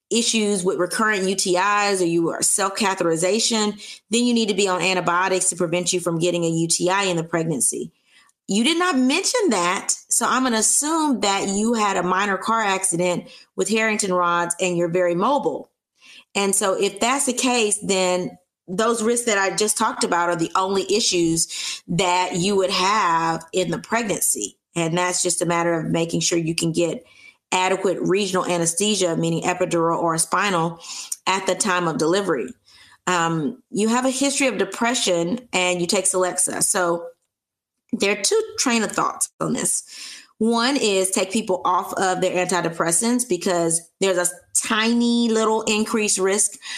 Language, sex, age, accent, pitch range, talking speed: English, female, 30-49, American, 175-220 Hz, 170 wpm